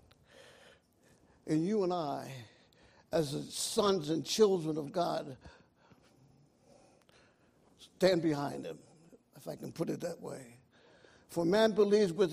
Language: English